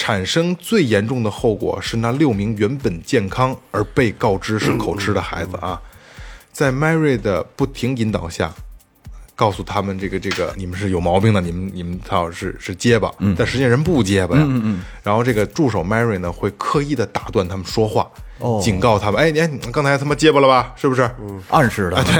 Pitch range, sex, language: 95-120 Hz, male, Chinese